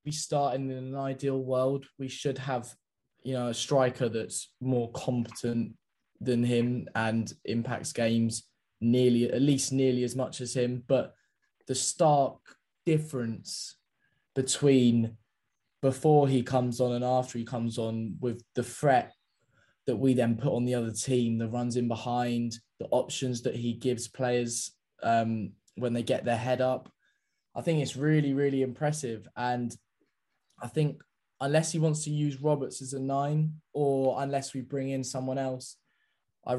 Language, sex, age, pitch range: English, male, 10-29, 120-135 Hz